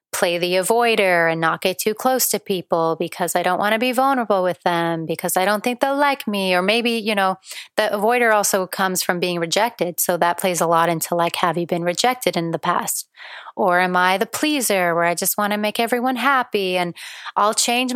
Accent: American